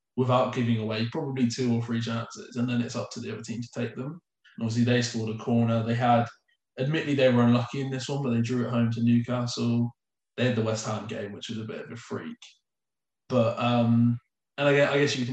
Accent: British